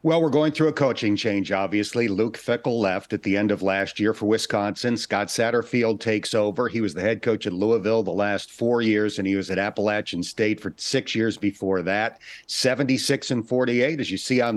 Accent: American